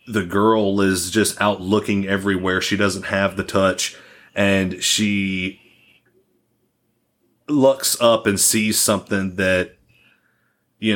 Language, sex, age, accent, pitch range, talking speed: English, male, 30-49, American, 95-110 Hz, 115 wpm